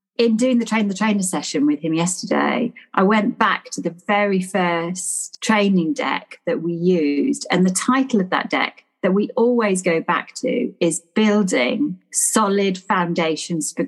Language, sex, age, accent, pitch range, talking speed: English, female, 40-59, British, 180-235 Hz, 170 wpm